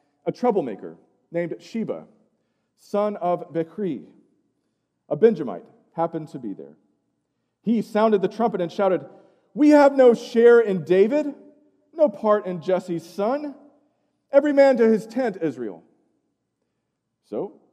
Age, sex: 40-59, male